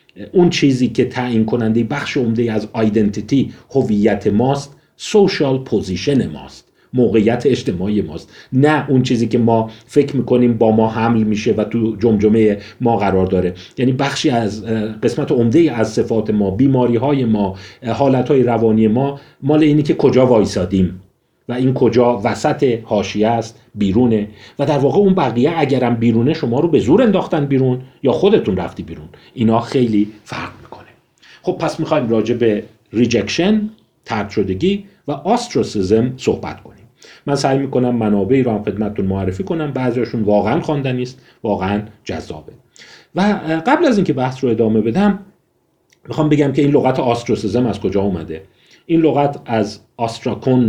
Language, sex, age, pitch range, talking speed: Persian, male, 40-59, 110-140 Hz, 155 wpm